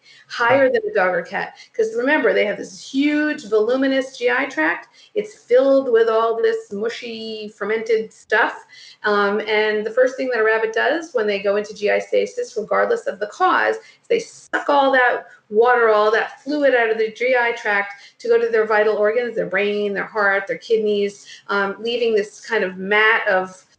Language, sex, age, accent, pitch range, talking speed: English, female, 40-59, American, 215-310 Hz, 190 wpm